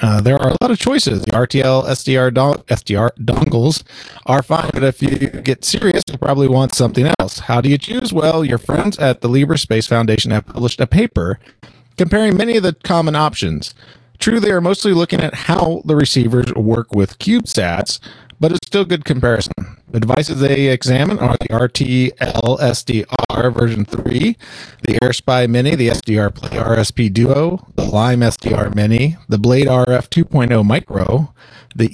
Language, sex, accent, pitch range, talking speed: English, male, American, 115-155 Hz, 170 wpm